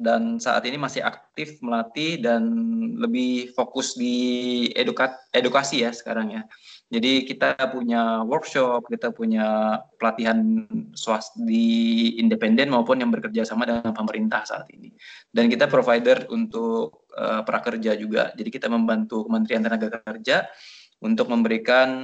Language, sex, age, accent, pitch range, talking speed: Indonesian, male, 20-39, native, 115-175 Hz, 130 wpm